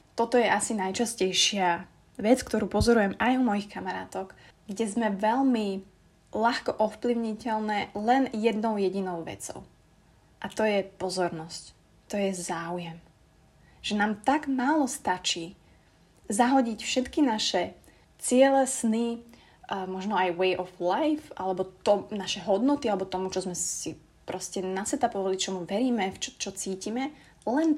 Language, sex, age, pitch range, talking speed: Slovak, female, 20-39, 185-230 Hz, 125 wpm